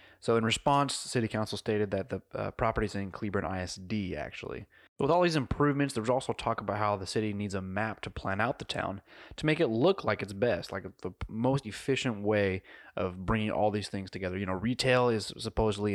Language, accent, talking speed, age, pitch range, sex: English, American, 220 wpm, 20-39, 95-115 Hz, male